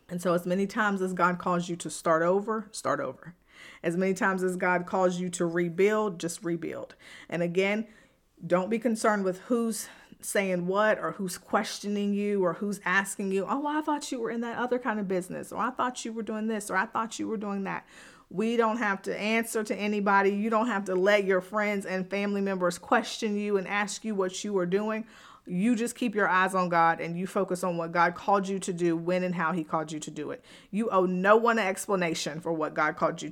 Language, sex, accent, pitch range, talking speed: English, female, American, 180-215 Hz, 235 wpm